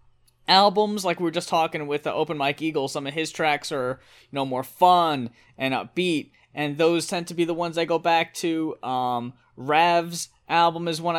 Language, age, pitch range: English, 20-39, 140-165 Hz